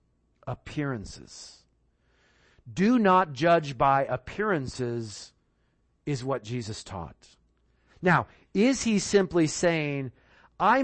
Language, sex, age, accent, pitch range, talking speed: English, male, 40-59, American, 115-170 Hz, 90 wpm